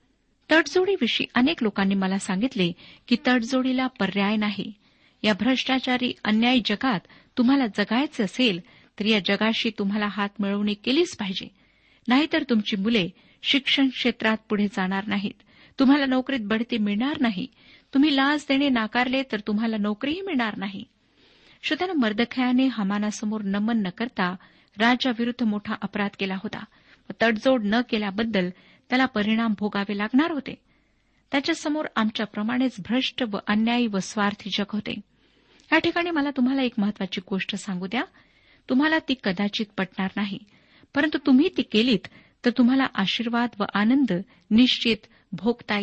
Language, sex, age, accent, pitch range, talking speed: Marathi, female, 50-69, native, 205-260 Hz, 130 wpm